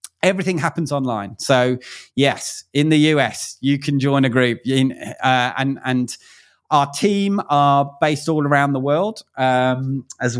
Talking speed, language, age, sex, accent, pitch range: 150 wpm, English, 30-49, male, British, 125-150 Hz